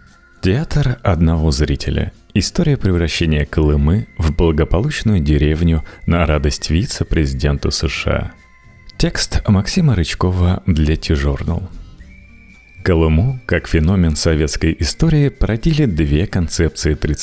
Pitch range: 75-105 Hz